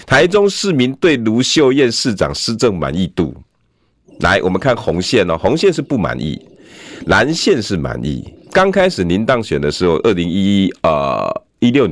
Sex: male